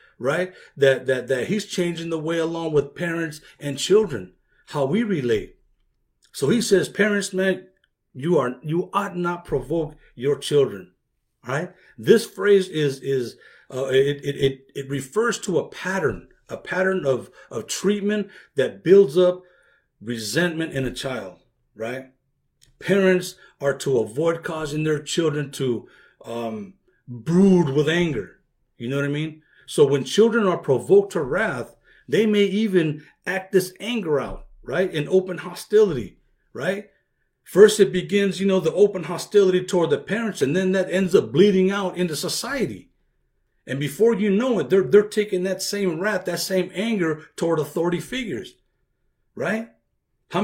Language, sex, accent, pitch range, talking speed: English, male, American, 150-200 Hz, 155 wpm